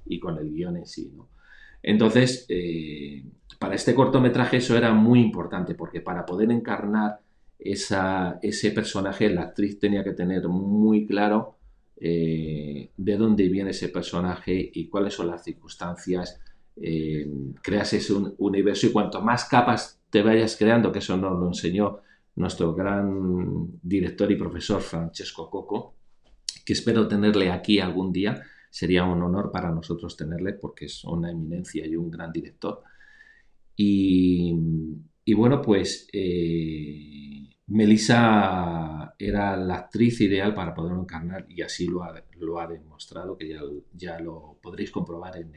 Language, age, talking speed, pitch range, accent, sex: Spanish, 40-59, 145 wpm, 85-105 Hz, Spanish, male